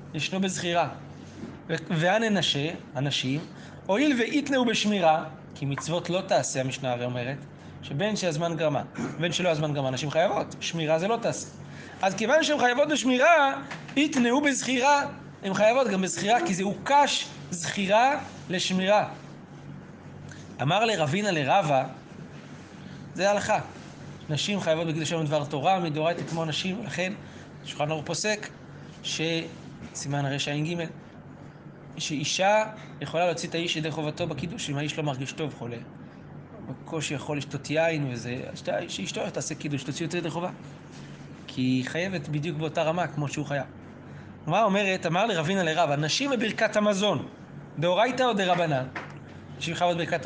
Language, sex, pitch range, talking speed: Hebrew, male, 150-195 Hz, 140 wpm